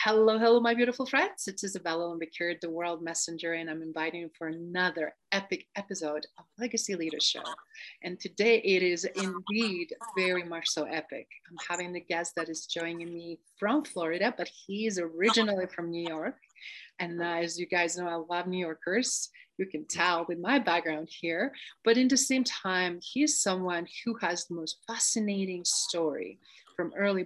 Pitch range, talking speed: 170-220 Hz, 175 wpm